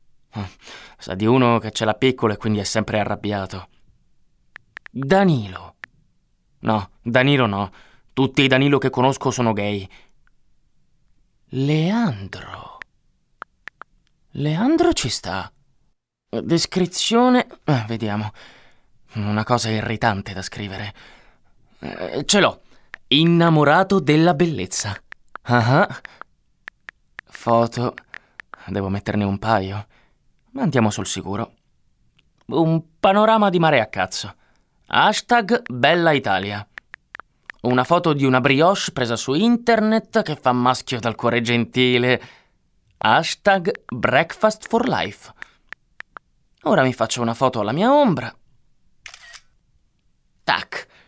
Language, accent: Italian, native